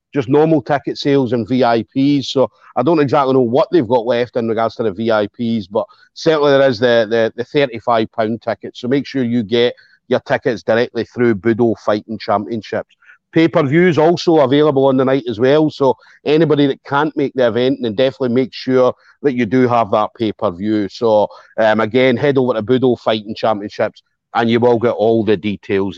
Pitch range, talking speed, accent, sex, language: 120-155 Hz, 190 wpm, British, male, English